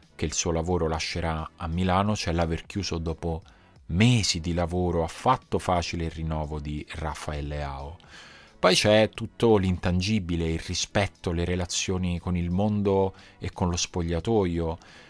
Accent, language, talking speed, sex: native, Italian, 145 wpm, male